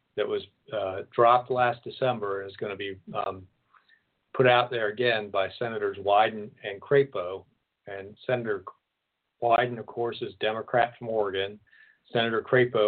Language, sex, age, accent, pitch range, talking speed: English, male, 50-69, American, 110-150 Hz, 150 wpm